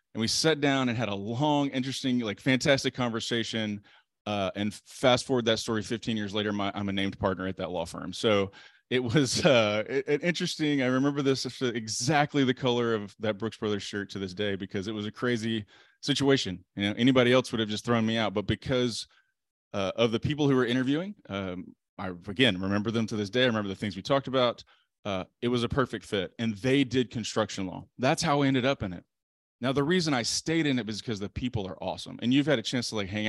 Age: 20-39